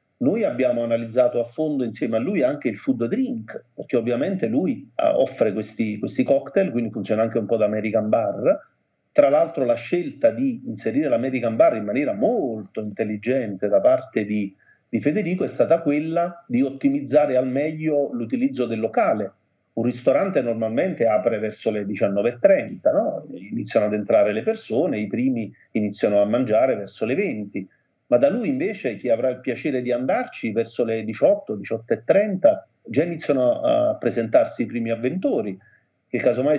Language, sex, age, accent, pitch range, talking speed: Italian, male, 40-59, native, 115-170 Hz, 160 wpm